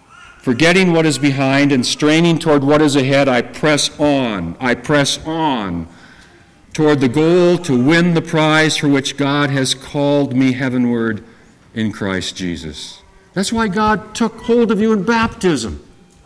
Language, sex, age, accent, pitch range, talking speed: English, male, 50-69, American, 130-185 Hz, 155 wpm